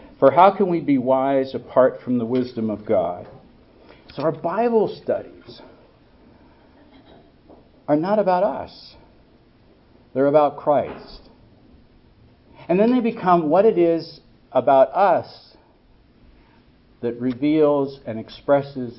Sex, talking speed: male, 115 wpm